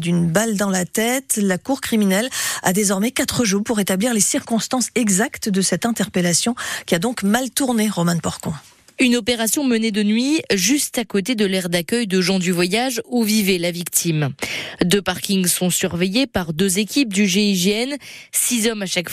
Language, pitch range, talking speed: French, 185-235 Hz, 185 wpm